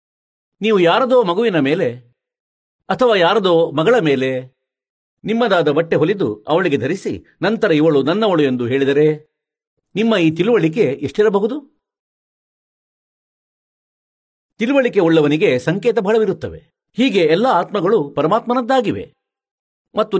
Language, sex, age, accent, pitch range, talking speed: Kannada, male, 50-69, native, 140-225 Hz, 90 wpm